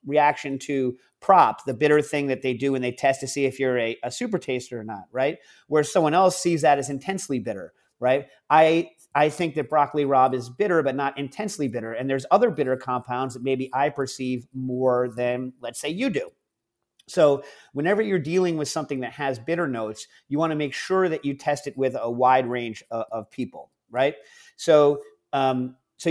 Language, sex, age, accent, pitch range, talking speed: English, male, 40-59, American, 125-150 Hz, 205 wpm